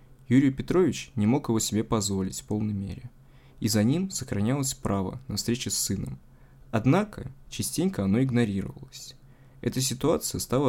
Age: 20-39